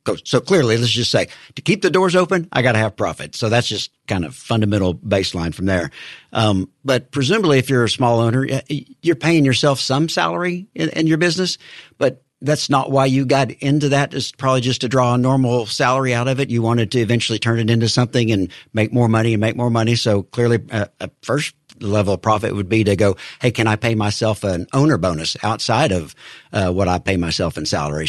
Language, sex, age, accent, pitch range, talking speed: English, male, 60-79, American, 105-135 Hz, 225 wpm